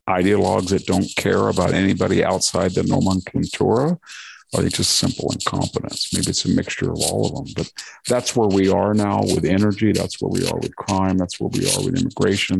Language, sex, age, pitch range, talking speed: English, male, 50-69, 90-105 Hz, 205 wpm